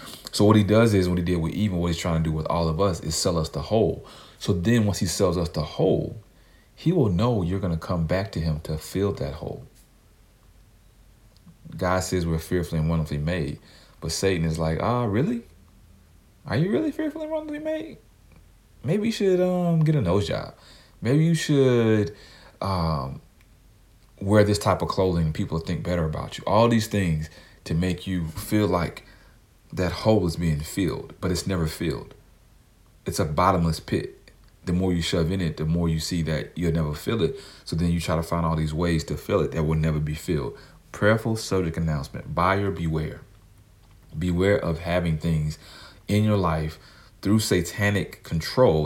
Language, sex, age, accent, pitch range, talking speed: English, male, 40-59, American, 80-105 Hz, 195 wpm